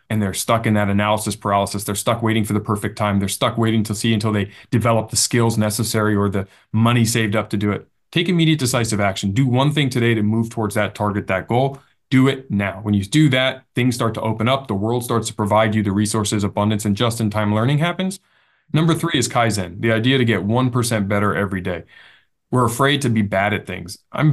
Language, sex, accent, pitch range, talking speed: English, male, American, 105-130 Hz, 230 wpm